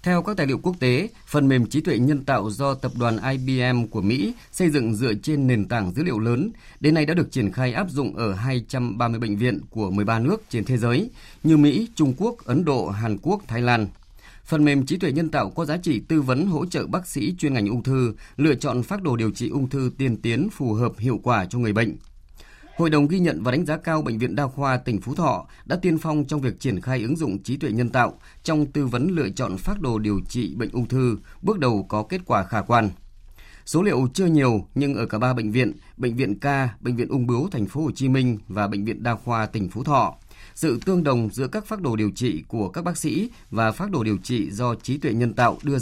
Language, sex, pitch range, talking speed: Vietnamese, male, 110-145 Hz, 245 wpm